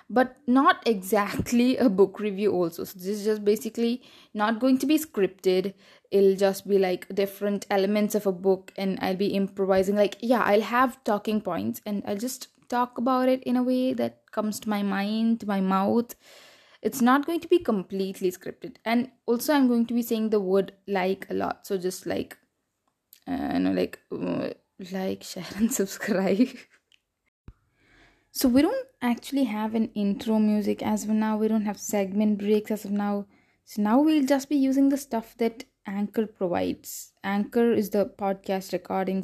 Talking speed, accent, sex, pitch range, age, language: 180 wpm, Indian, female, 195-245 Hz, 20-39, English